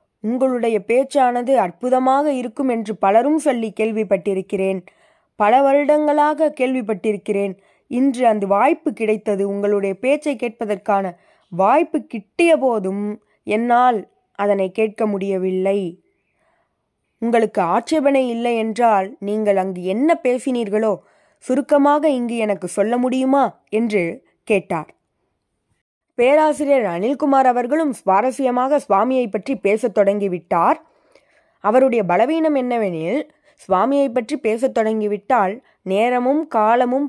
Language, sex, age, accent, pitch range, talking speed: Tamil, female, 20-39, native, 200-265 Hz, 85 wpm